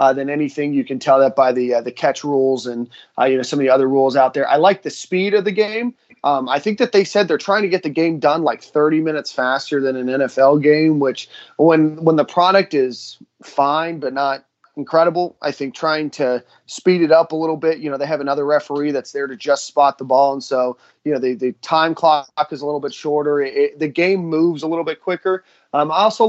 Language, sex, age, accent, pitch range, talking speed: English, male, 30-49, American, 135-165 Hz, 250 wpm